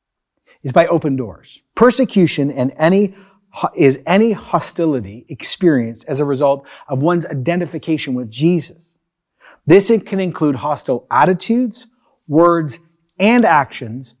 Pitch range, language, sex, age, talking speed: 135-170 Hz, English, male, 40-59, 115 wpm